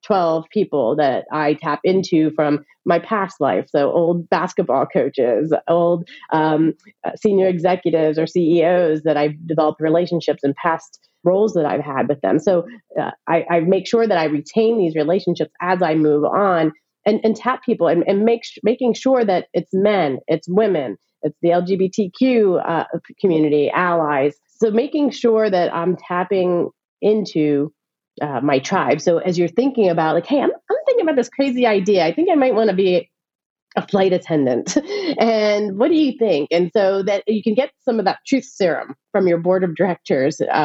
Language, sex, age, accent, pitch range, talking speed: English, female, 30-49, American, 160-210 Hz, 185 wpm